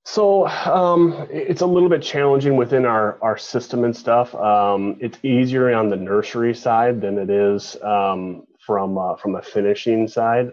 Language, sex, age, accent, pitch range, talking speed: English, male, 30-49, American, 95-115 Hz, 170 wpm